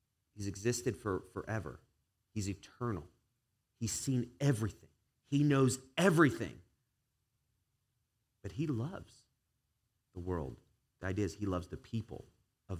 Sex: male